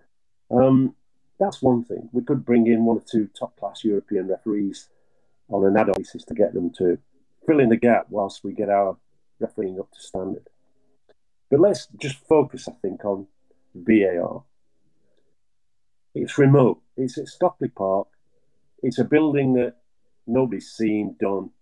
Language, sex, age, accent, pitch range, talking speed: English, male, 40-59, British, 100-125 Hz, 155 wpm